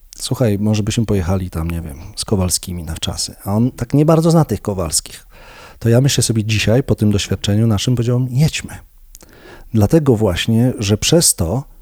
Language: Polish